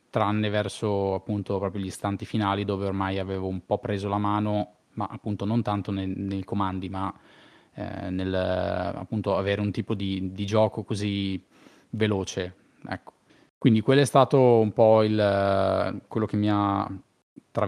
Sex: male